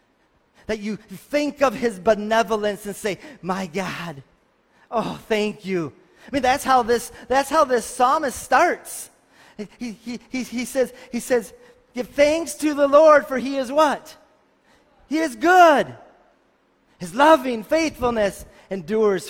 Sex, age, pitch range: male, 30-49, 205-255 Hz